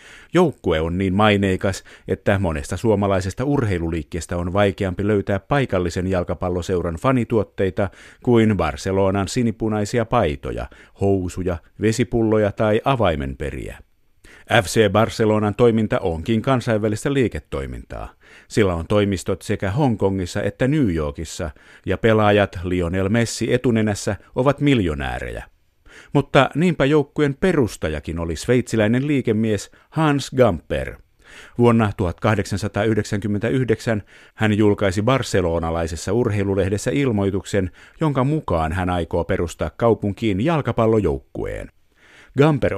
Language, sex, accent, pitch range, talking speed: Finnish, male, native, 95-115 Hz, 95 wpm